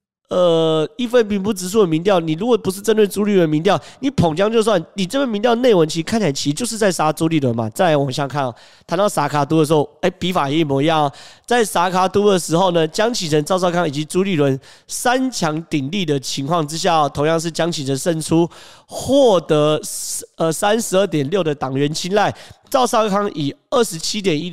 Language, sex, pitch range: Chinese, male, 145-200 Hz